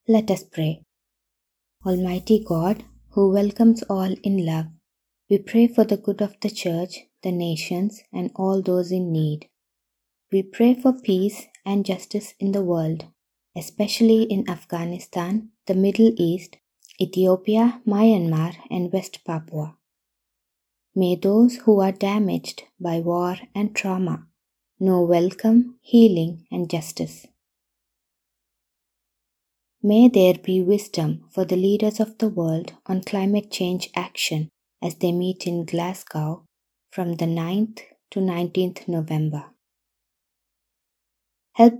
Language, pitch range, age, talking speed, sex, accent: English, 165-205 Hz, 20-39, 120 wpm, female, Indian